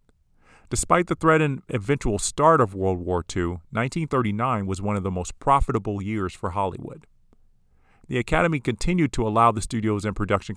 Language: English